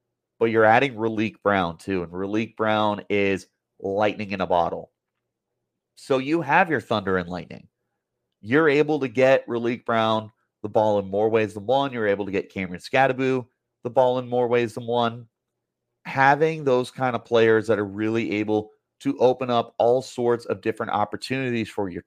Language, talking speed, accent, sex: English, 180 wpm, American, male